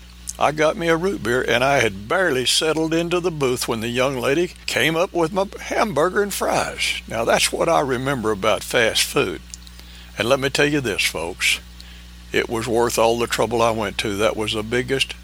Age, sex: 60-79, male